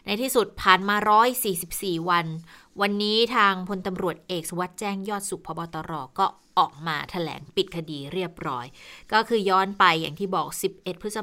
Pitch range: 170-205 Hz